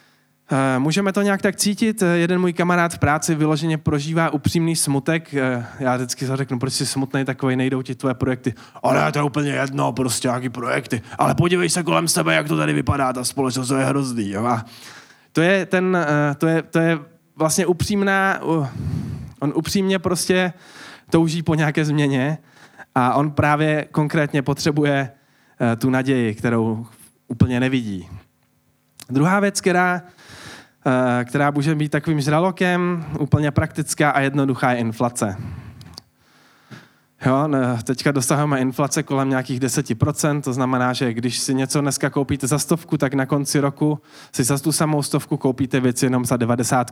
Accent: native